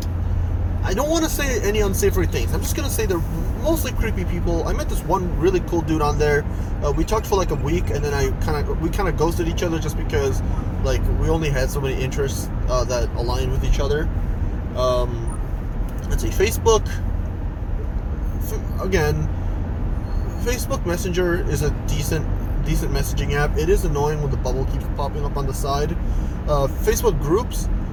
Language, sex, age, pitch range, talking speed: English, male, 20-39, 85-105 Hz, 185 wpm